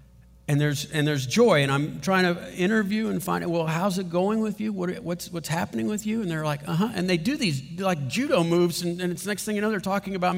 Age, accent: 50-69, American